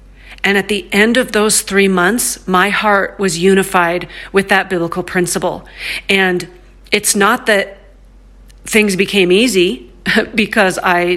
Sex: female